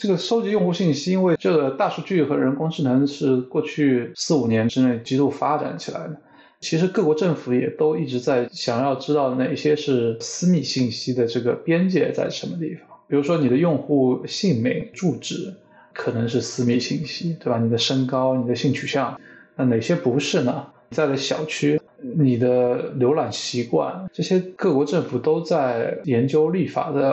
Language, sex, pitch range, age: Chinese, male, 125-165 Hz, 20-39